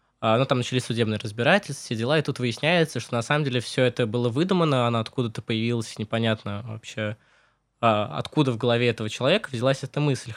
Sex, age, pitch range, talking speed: male, 20-39, 115-140 Hz, 180 wpm